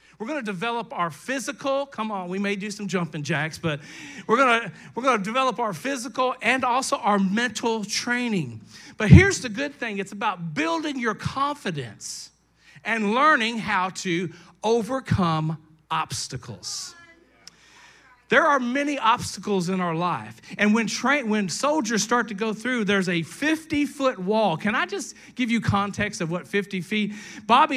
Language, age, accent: English, 40-59, American